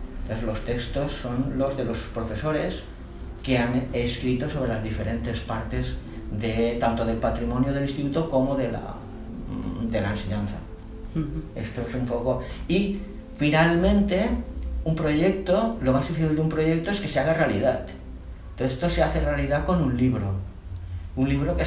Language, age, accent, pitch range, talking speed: Spanish, 40-59, Spanish, 110-140 Hz, 160 wpm